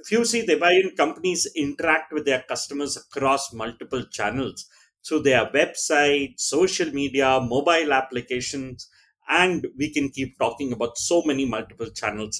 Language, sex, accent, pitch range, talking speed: English, male, Indian, 125-185 Hz, 140 wpm